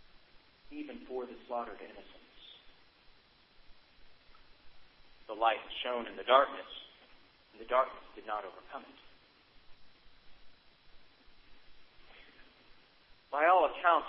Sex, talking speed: male, 90 wpm